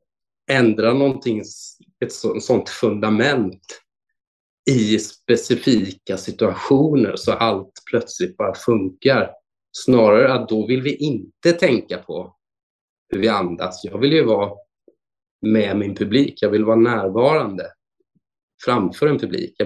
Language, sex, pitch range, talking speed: Swedish, male, 105-135 Hz, 120 wpm